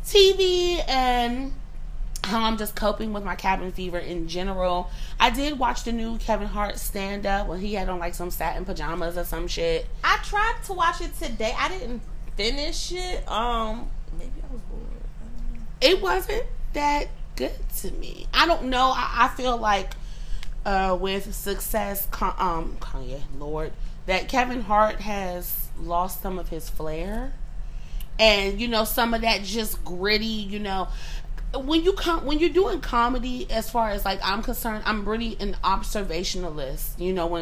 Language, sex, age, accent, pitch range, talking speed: English, female, 30-49, American, 180-255 Hz, 180 wpm